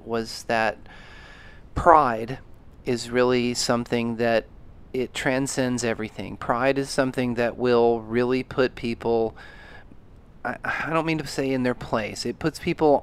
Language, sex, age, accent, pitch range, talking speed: English, male, 30-49, American, 115-145 Hz, 140 wpm